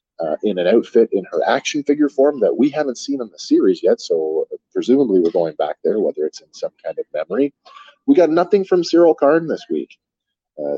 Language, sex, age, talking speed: English, male, 30-49, 215 wpm